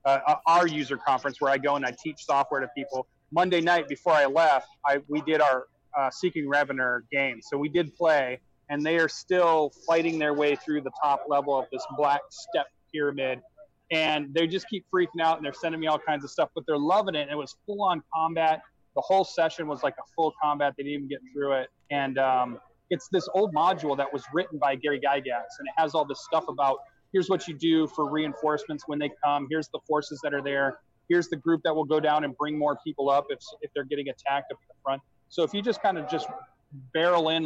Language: English